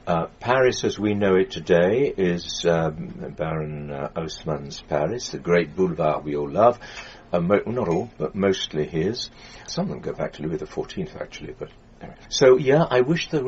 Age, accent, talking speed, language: 60-79, British, 185 wpm, English